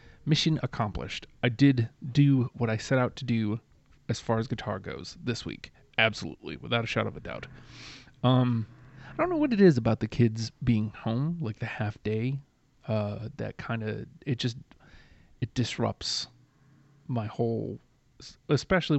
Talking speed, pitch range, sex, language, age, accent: 165 wpm, 115-130 Hz, male, English, 30-49, American